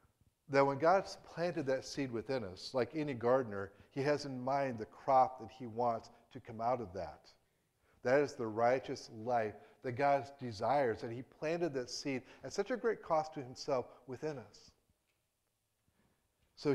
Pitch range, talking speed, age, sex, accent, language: 105-135 Hz, 170 wpm, 50-69, male, American, English